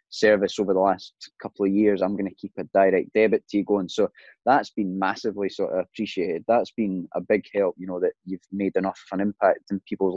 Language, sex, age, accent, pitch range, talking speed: English, male, 20-39, British, 95-105 Hz, 235 wpm